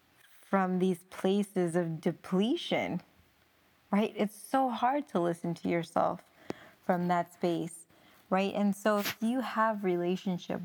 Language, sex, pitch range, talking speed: English, female, 170-195 Hz, 130 wpm